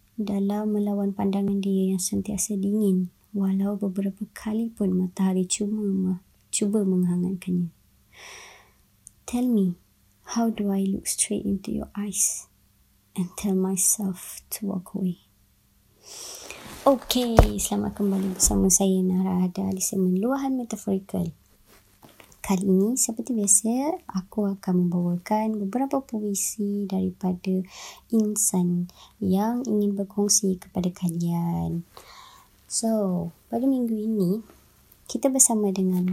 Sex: male